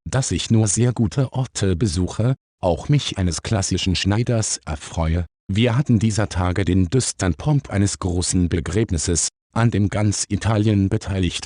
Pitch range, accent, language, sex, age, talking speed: 90-115 Hz, German, German, male, 50-69, 145 wpm